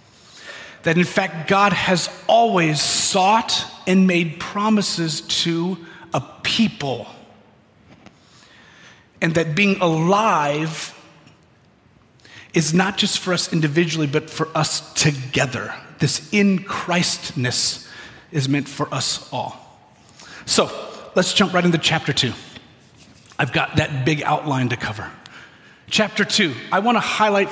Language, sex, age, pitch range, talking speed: English, male, 40-59, 150-190 Hz, 120 wpm